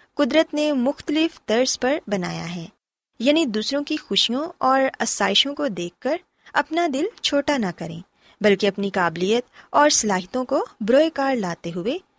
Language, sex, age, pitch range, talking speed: Urdu, female, 20-39, 195-295 Hz, 155 wpm